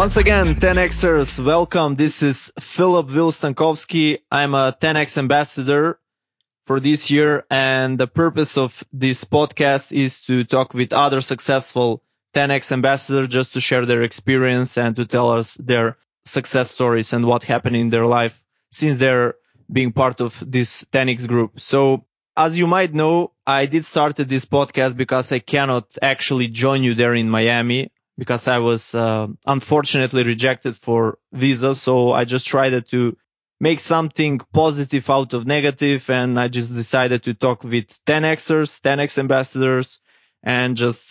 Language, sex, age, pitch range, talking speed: English, male, 20-39, 125-150 Hz, 155 wpm